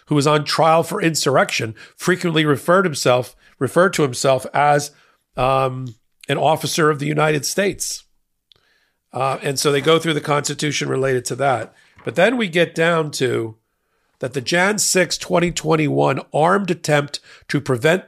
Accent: American